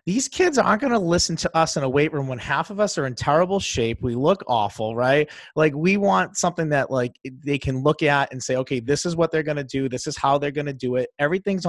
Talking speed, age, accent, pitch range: 270 wpm, 30-49, American, 125-155 Hz